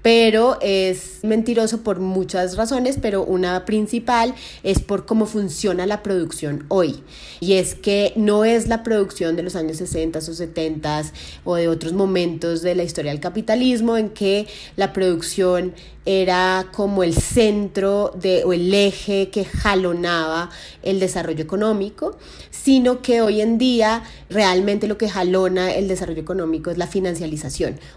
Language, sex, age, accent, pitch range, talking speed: Spanish, female, 30-49, Colombian, 180-220 Hz, 150 wpm